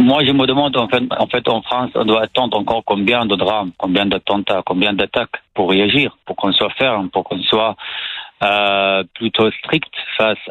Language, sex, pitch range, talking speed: French, male, 100-115 Hz, 185 wpm